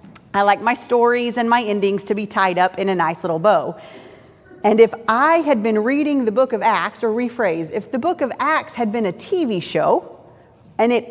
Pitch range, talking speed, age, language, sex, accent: 230-320 Hz, 215 wpm, 30-49, English, female, American